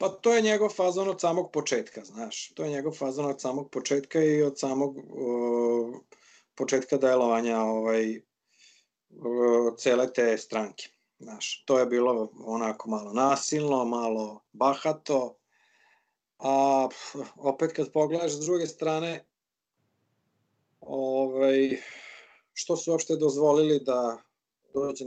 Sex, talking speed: male, 120 wpm